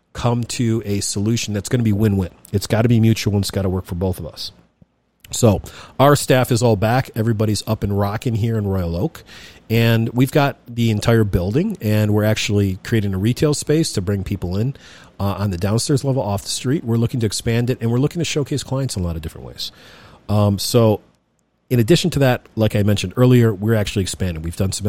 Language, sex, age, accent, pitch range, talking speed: English, male, 40-59, American, 95-120 Hz, 230 wpm